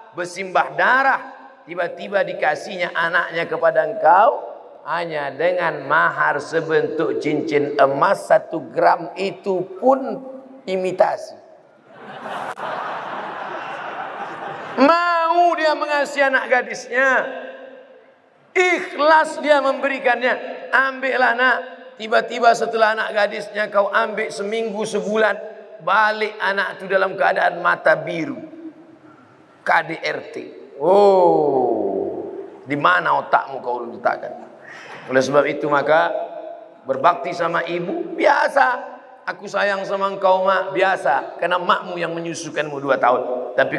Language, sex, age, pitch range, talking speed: Indonesian, male, 40-59, 185-300 Hz, 95 wpm